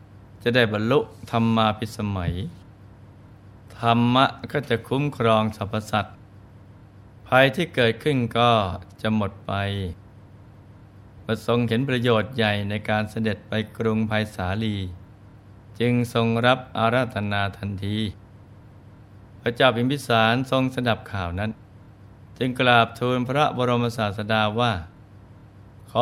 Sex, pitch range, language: male, 100-120 Hz, Thai